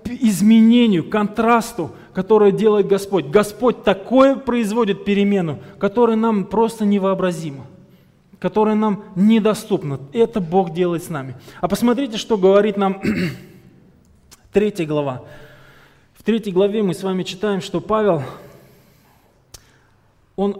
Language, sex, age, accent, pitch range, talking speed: Russian, male, 20-39, native, 195-245 Hz, 110 wpm